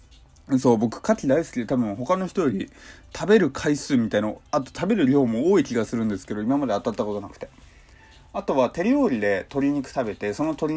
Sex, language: male, Japanese